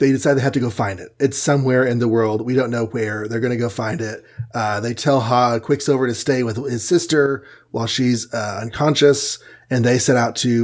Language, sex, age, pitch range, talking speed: English, male, 30-49, 115-140 Hz, 235 wpm